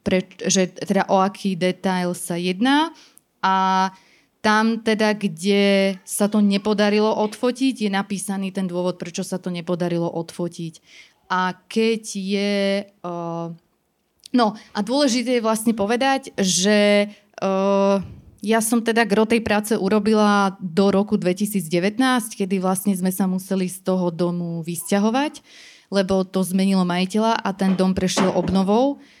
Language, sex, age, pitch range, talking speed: Slovak, female, 20-39, 185-210 Hz, 135 wpm